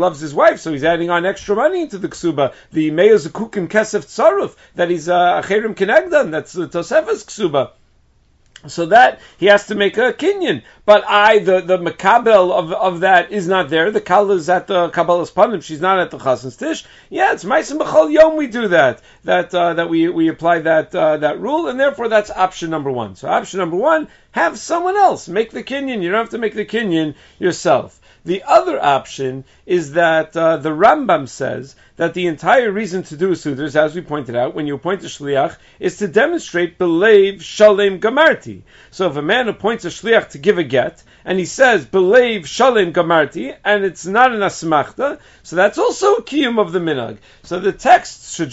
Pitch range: 165-220 Hz